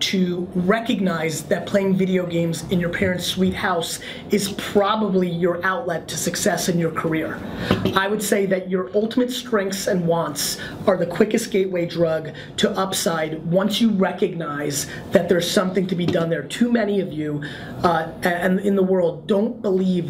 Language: English